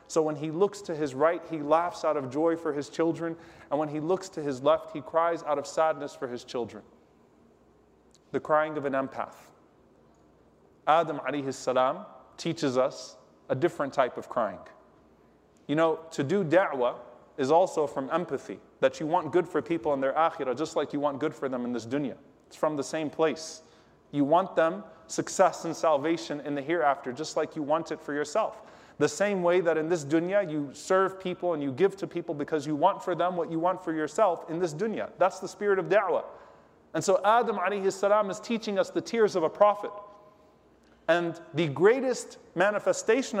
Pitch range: 150-190 Hz